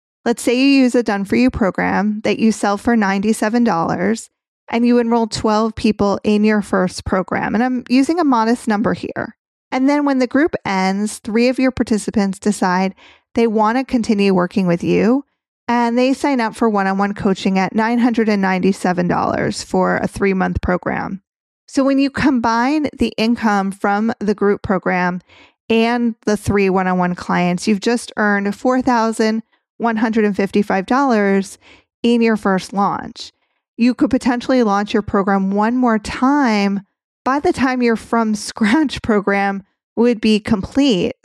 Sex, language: female, English